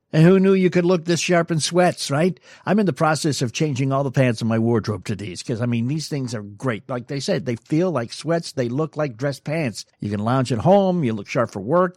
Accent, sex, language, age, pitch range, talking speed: American, male, English, 60-79, 120-165 Hz, 270 wpm